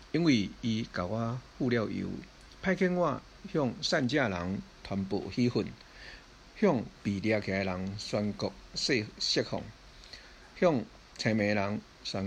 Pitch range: 95-130 Hz